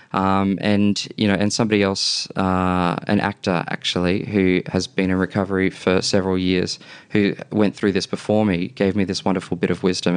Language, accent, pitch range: English, Australian, 95-110 Hz